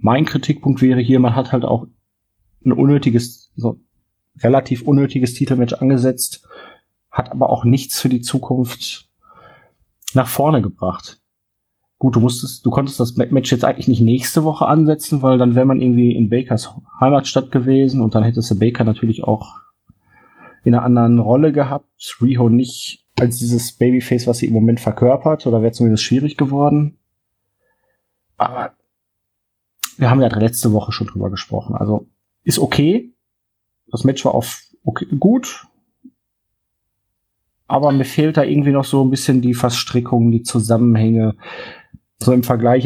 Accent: German